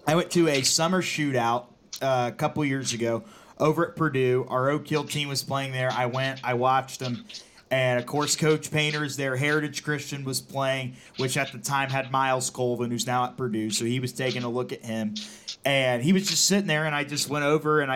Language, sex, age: English, male, 30-49